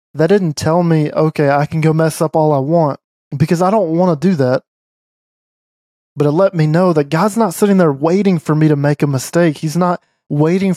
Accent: American